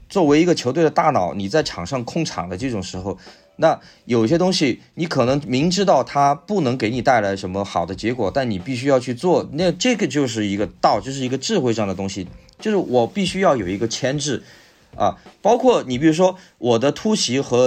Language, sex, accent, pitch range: Chinese, male, native, 105-155 Hz